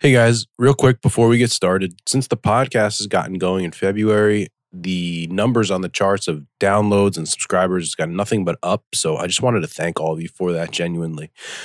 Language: English